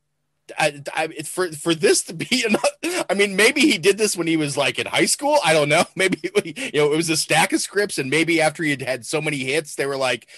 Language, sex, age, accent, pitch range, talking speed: English, male, 30-49, American, 110-160 Hz, 255 wpm